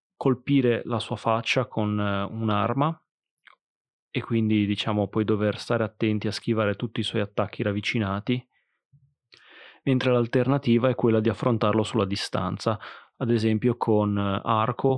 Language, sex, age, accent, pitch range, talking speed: Italian, male, 30-49, native, 105-125 Hz, 130 wpm